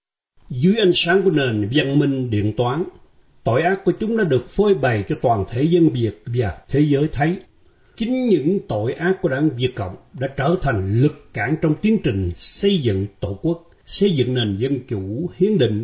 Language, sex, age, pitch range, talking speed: Vietnamese, male, 60-79, 115-175 Hz, 200 wpm